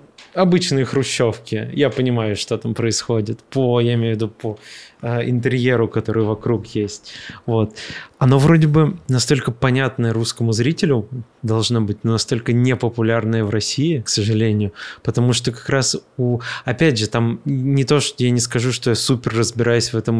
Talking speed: 160 wpm